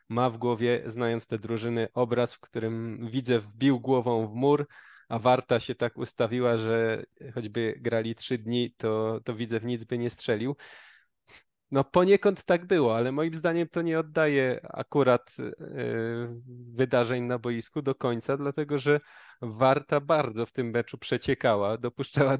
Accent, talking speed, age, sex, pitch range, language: native, 155 wpm, 20-39, male, 120-145 Hz, Polish